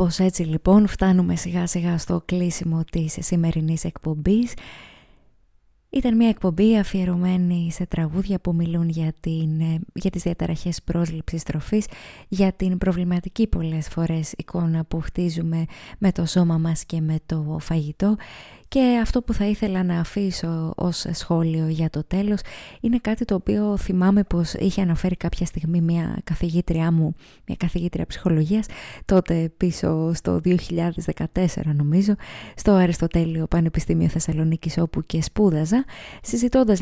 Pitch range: 165-195 Hz